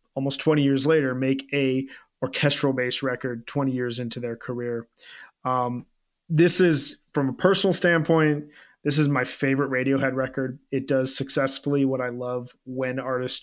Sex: male